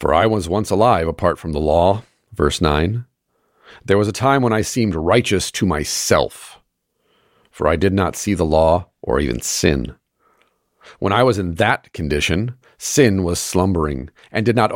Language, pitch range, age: English, 80-105 Hz, 40-59